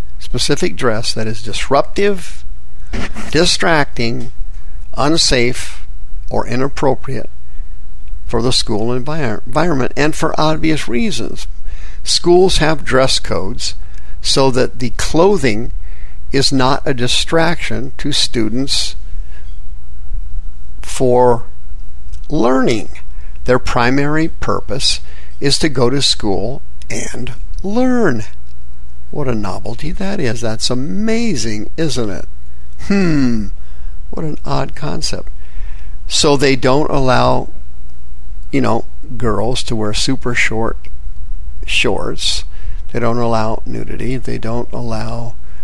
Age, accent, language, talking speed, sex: 50-69, American, English, 100 wpm, male